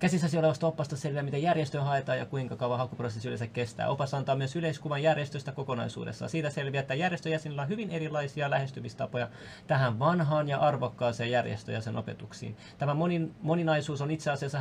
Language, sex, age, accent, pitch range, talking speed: Finnish, male, 20-39, native, 125-155 Hz, 160 wpm